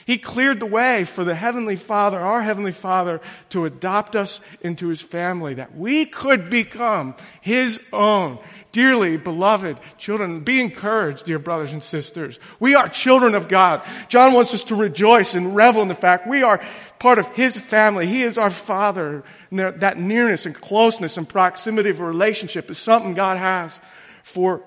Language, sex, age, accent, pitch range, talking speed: English, male, 50-69, American, 180-225 Hz, 175 wpm